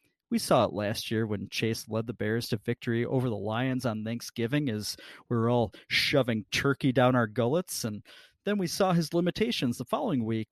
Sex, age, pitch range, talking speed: male, 40-59, 115-140 Hz, 200 wpm